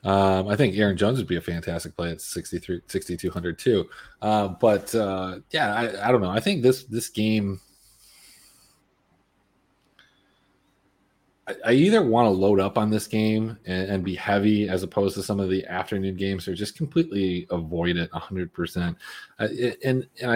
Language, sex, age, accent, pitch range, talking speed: English, male, 30-49, American, 95-120 Hz, 170 wpm